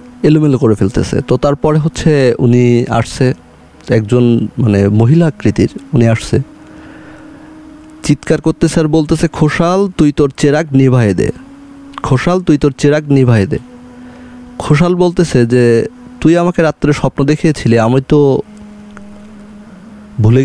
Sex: male